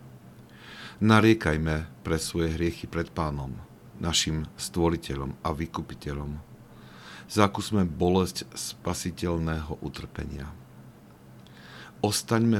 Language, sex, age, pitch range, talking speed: Slovak, male, 50-69, 70-90 Hz, 70 wpm